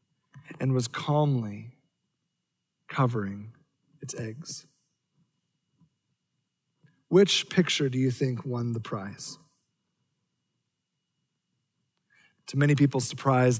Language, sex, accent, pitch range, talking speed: English, male, American, 130-150 Hz, 80 wpm